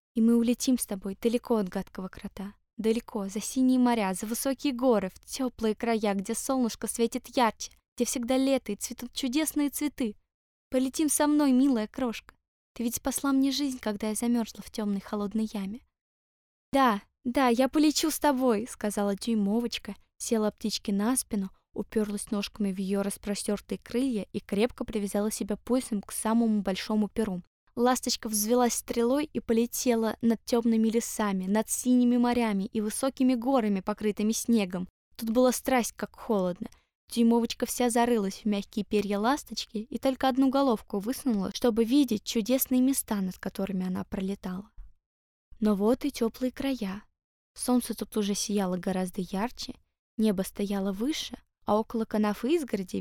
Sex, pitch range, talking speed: female, 205-250 Hz, 150 wpm